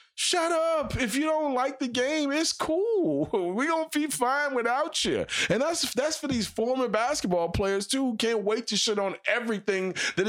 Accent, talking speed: American, 190 wpm